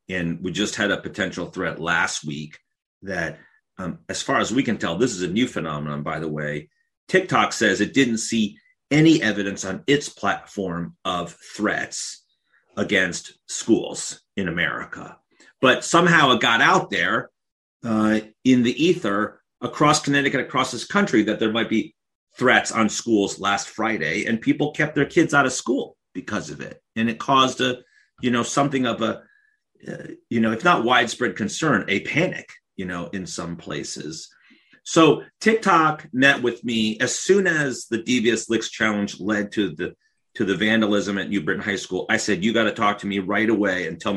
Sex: male